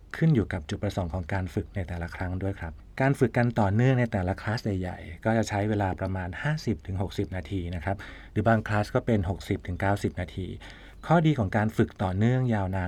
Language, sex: Thai, male